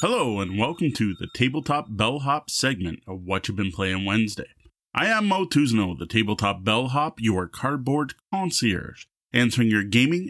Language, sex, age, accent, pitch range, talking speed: English, male, 30-49, American, 105-145 Hz, 155 wpm